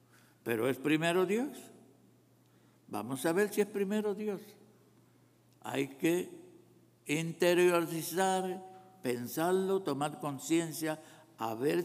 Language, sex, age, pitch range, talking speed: English, male, 60-79, 140-180 Hz, 95 wpm